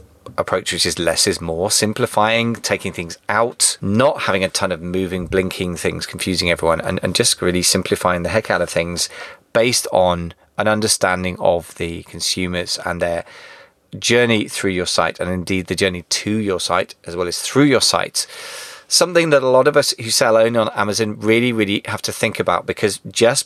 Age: 30-49